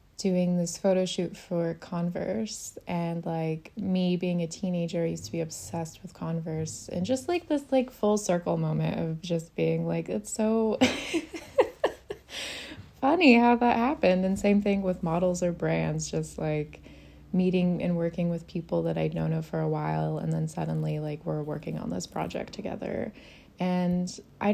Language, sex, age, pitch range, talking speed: English, female, 20-39, 170-210 Hz, 165 wpm